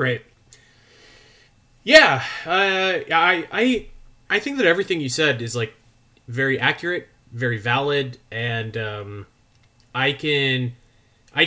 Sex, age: male, 30-49